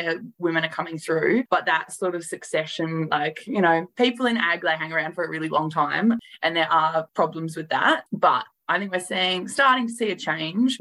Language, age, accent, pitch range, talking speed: English, 20-39, Australian, 155-190 Hz, 215 wpm